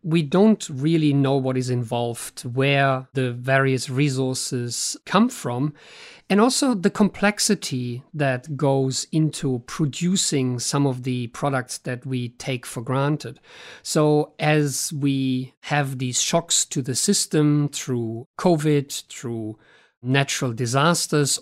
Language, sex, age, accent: English, male, 50-69, German